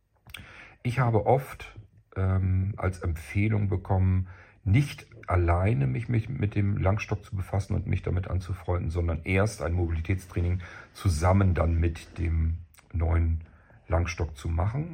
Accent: German